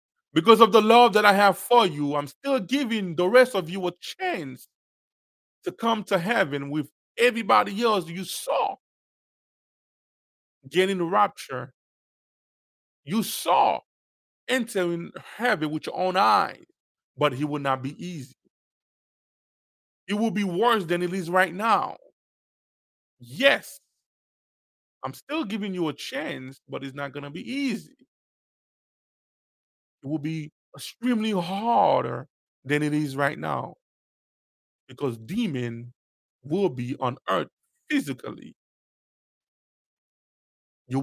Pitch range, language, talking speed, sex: 140-215 Hz, English, 125 wpm, male